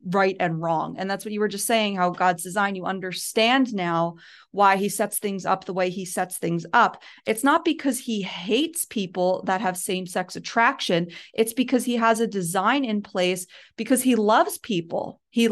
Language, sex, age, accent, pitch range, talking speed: English, female, 30-49, American, 185-225 Hz, 195 wpm